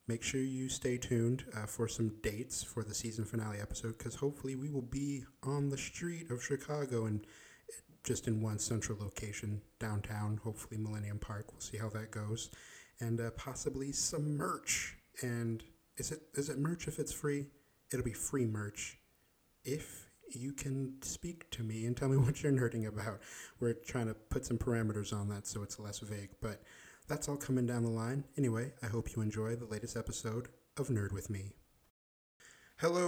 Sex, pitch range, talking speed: male, 110-140 Hz, 185 wpm